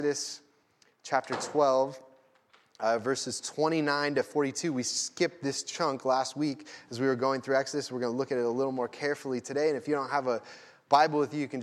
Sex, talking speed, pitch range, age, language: male, 215 wpm, 115-140 Hz, 20-39, English